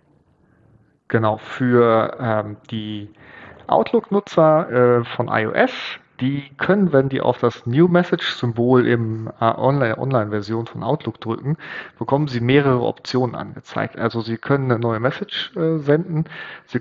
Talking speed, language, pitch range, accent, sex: 130 wpm, German, 115-145 Hz, German, male